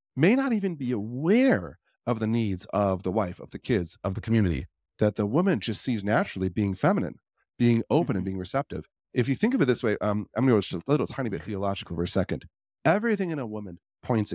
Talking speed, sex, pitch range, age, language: 235 wpm, male, 100-145 Hz, 40-59, English